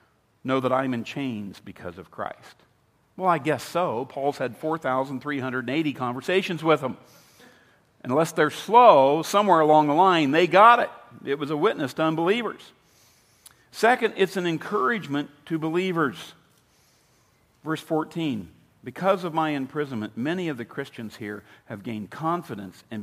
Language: English